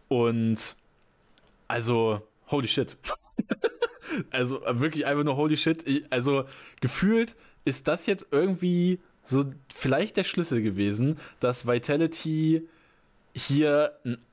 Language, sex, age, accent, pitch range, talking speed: German, male, 20-39, German, 120-160 Hz, 105 wpm